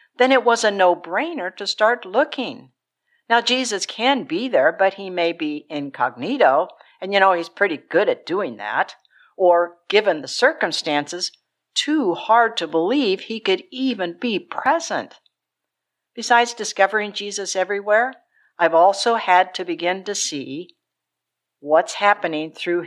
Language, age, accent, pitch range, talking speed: English, 60-79, American, 165-235 Hz, 140 wpm